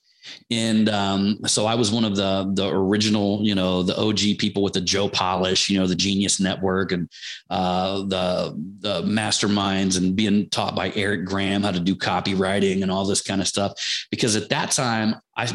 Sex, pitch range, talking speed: male, 95-110 Hz, 195 wpm